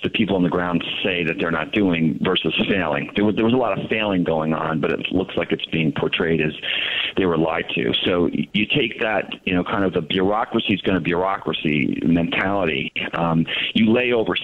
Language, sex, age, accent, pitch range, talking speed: English, male, 40-59, American, 80-100 Hz, 220 wpm